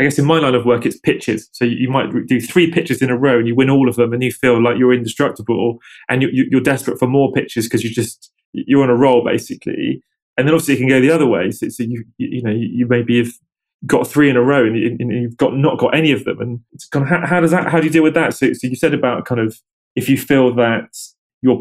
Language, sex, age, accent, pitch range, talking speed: English, male, 20-39, British, 120-140 Hz, 295 wpm